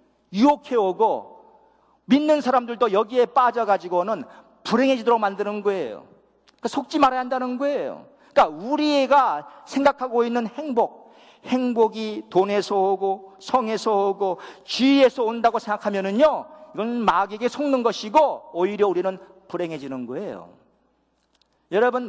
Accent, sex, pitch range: native, male, 200-265 Hz